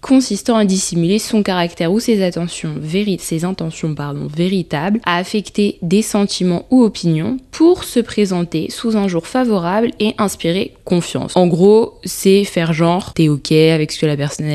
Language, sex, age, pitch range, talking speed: French, female, 20-39, 155-195 Hz, 170 wpm